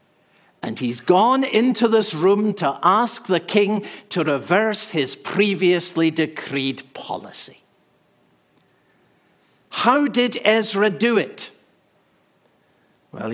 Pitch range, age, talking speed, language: 140-190 Hz, 60-79, 100 wpm, English